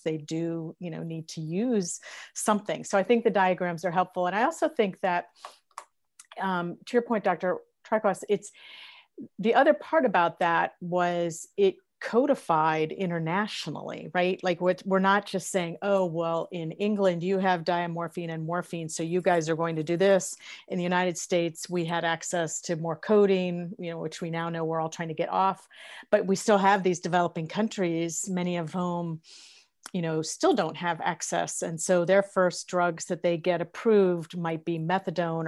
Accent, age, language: American, 40-59, English